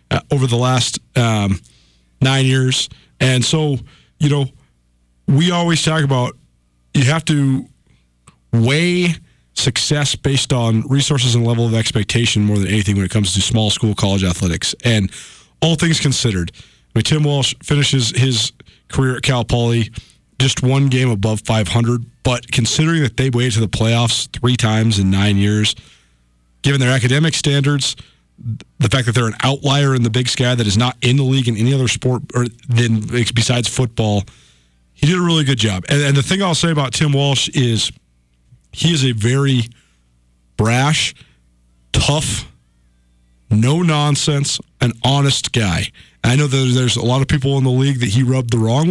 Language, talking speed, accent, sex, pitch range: English, 170 wpm, American, male, 110-135 Hz